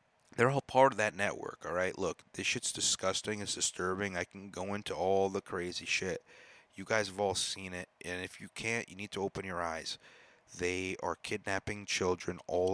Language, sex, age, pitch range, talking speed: English, male, 30-49, 90-110 Hz, 205 wpm